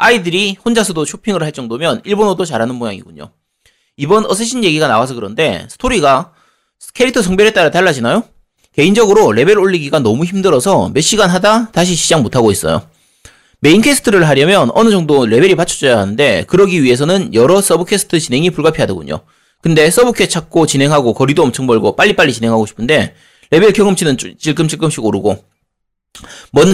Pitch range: 135-200 Hz